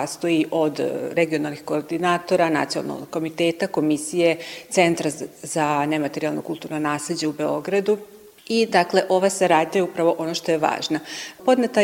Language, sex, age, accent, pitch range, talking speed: Croatian, female, 40-59, native, 160-185 Hz, 125 wpm